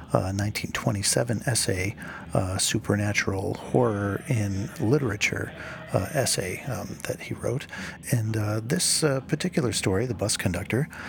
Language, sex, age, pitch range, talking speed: English, male, 50-69, 100-120 Hz, 125 wpm